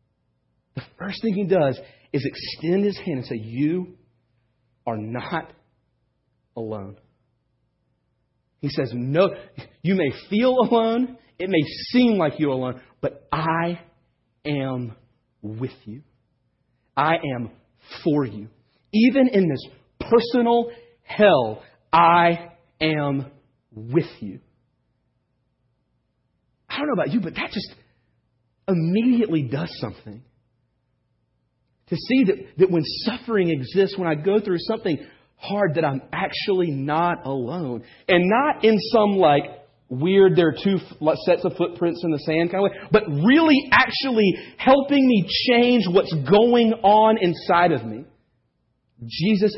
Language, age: English, 40-59